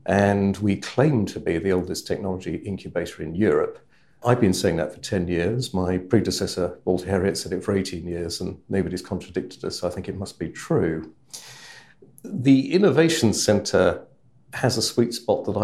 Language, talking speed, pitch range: English, 175 wpm, 90-110 Hz